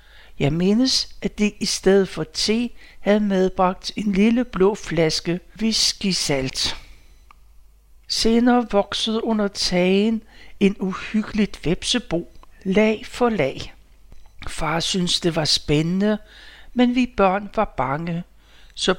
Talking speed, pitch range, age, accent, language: 115 wpm, 175-215 Hz, 60-79, native, Danish